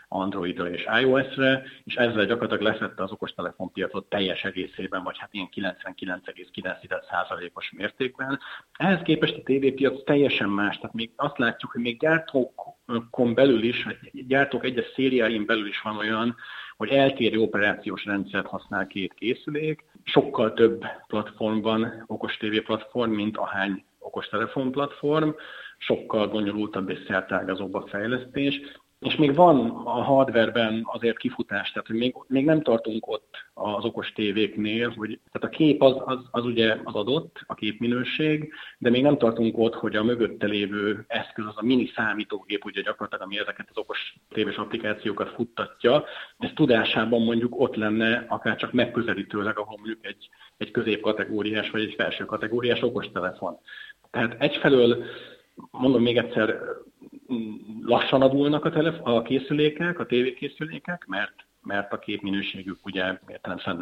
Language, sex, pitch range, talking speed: Hungarian, male, 105-135 Hz, 140 wpm